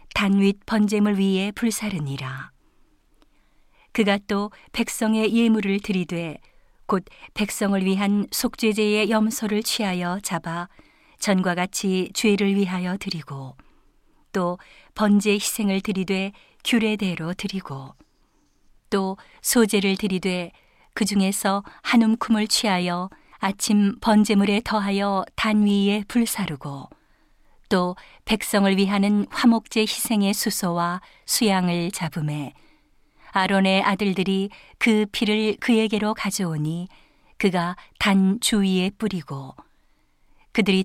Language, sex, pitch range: Korean, female, 185-215 Hz